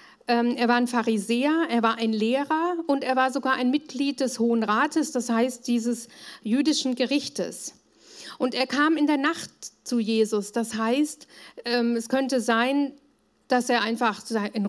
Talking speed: 160 wpm